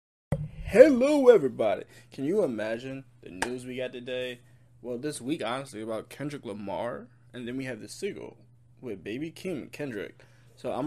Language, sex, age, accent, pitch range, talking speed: English, male, 20-39, American, 115-125 Hz, 160 wpm